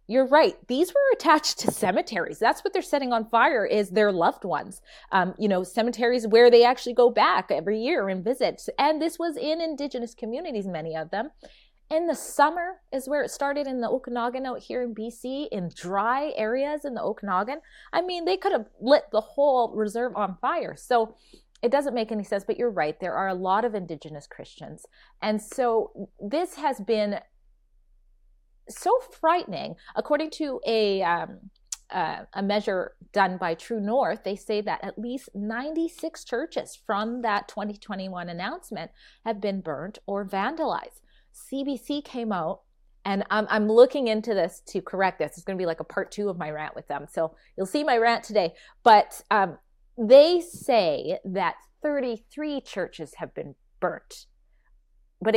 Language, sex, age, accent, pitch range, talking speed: English, female, 30-49, American, 200-280 Hz, 175 wpm